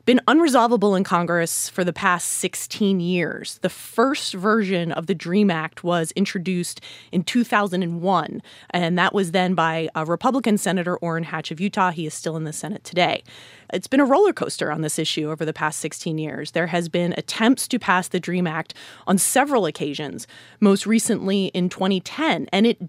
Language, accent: English, American